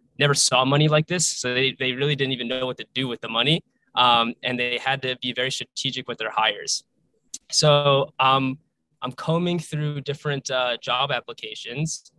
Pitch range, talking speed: 130-160 Hz, 185 wpm